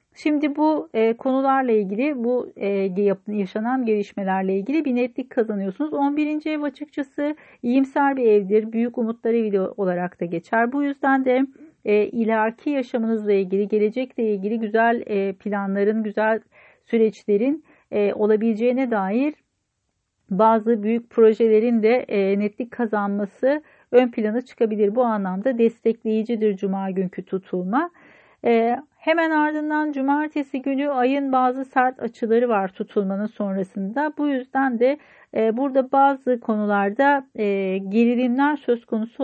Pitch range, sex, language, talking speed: 205-260 Hz, female, Turkish, 110 wpm